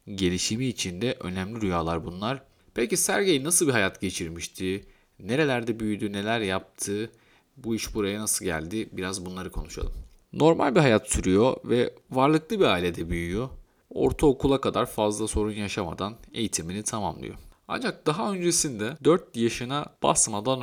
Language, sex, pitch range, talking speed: Turkish, male, 95-130 Hz, 130 wpm